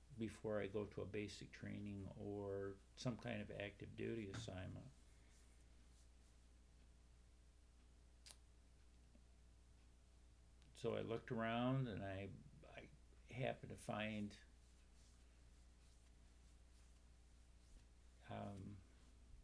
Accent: American